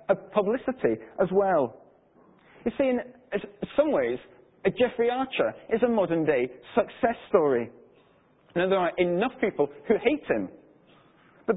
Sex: male